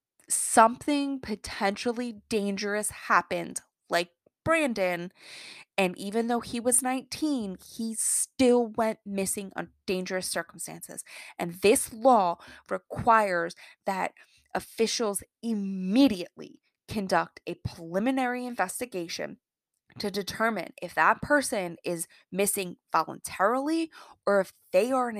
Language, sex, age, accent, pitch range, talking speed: English, female, 20-39, American, 180-250 Hz, 100 wpm